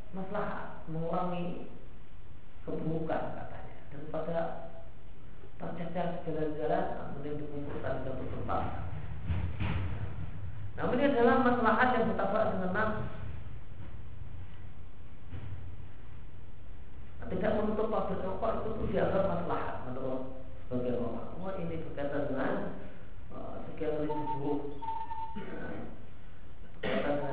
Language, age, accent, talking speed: Indonesian, 40-59, native, 65 wpm